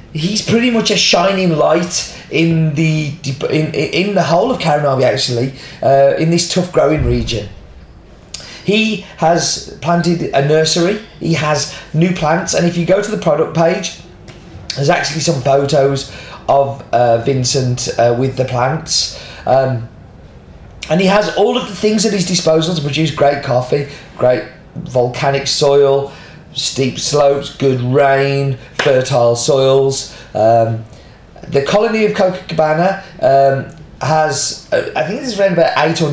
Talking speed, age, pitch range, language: 145 wpm, 30-49, 135-170 Hz, English